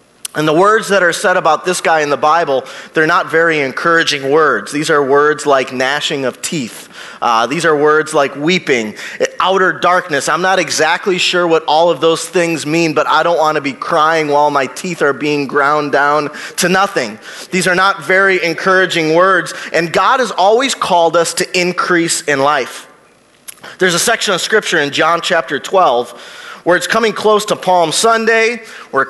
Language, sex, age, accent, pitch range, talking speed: English, male, 30-49, American, 145-185 Hz, 190 wpm